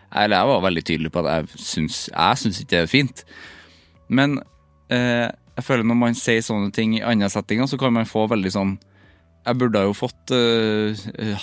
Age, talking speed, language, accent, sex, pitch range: 20-39, 190 wpm, English, Norwegian, male, 95-125 Hz